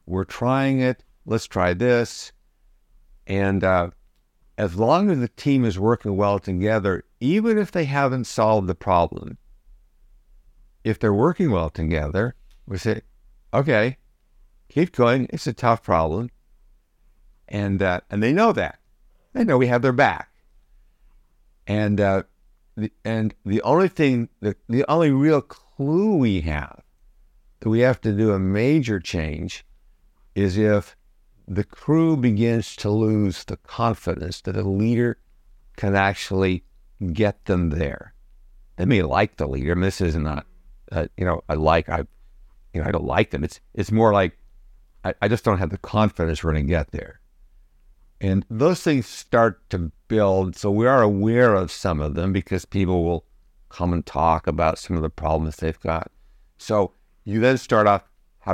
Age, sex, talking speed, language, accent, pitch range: 60-79, male, 165 wpm, English, American, 85-115 Hz